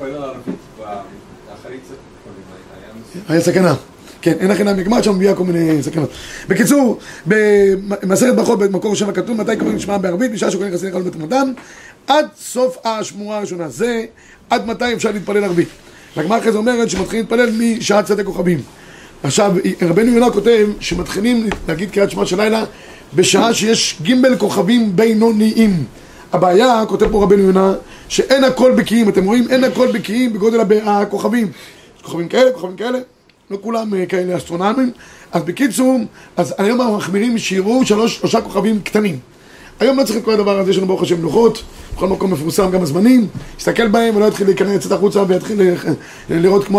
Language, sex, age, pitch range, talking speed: Hebrew, male, 30-49, 185-230 Hz, 155 wpm